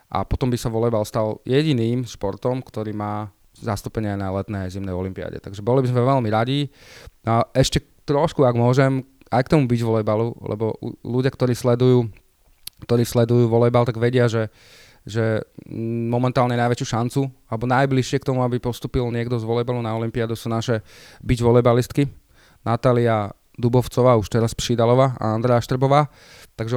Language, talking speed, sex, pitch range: Slovak, 155 wpm, male, 110-130 Hz